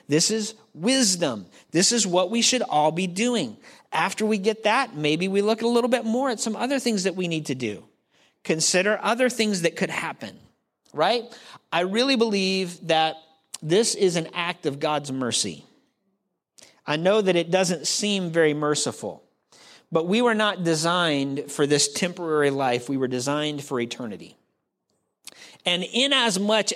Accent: American